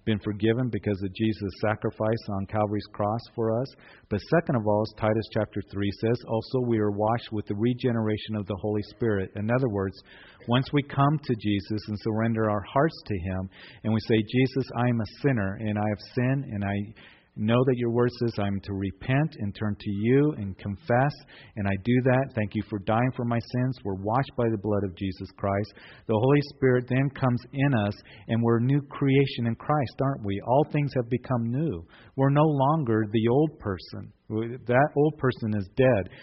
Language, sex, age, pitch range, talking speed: English, male, 40-59, 105-130 Hz, 205 wpm